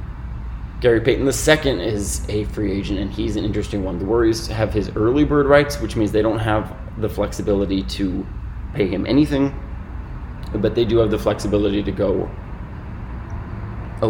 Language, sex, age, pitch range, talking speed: English, male, 20-39, 95-110 Hz, 170 wpm